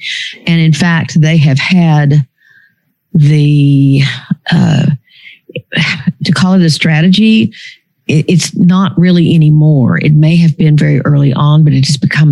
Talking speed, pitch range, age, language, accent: 135 wpm, 145-175 Hz, 50-69, English, American